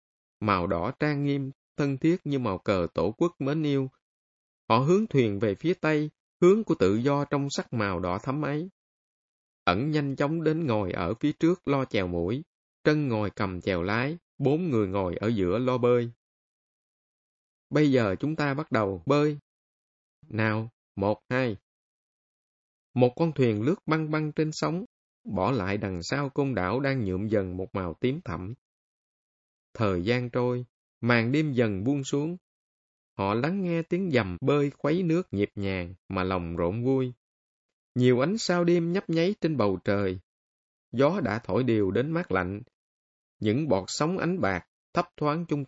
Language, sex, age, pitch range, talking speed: Vietnamese, male, 20-39, 100-155 Hz, 170 wpm